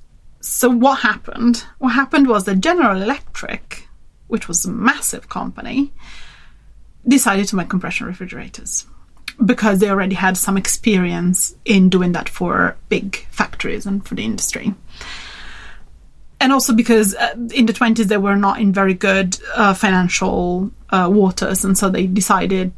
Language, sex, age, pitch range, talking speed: English, female, 30-49, 190-235 Hz, 145 wpm